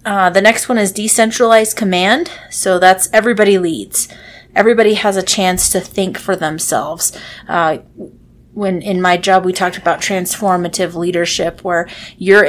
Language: English